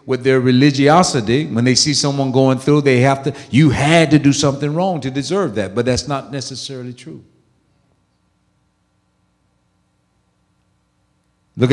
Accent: American